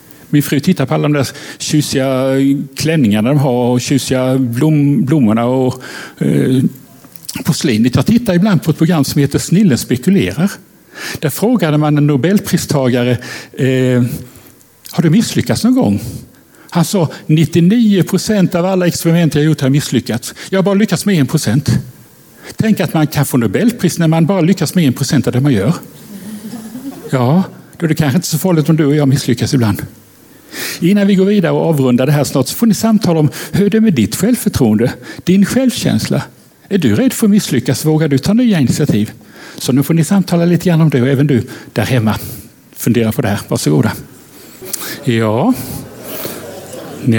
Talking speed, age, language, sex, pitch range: 185 wpm, 60-79, Swedish, male, 130-180 Hz